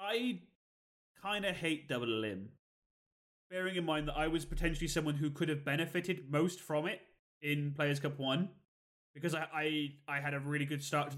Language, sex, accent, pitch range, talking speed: English, male, British, 130-170 Hz, 190 wpm